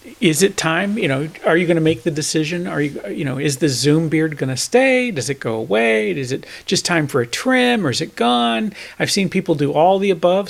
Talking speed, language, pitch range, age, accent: 245 wpm, English, 145-200 Hz, 40-59, American